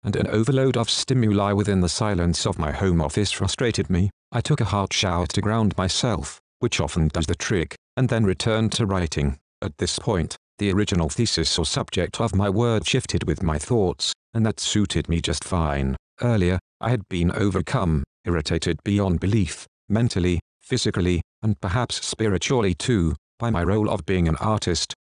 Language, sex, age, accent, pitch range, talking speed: English, male, 40-59, British, 85-110 Hz, 175 wpm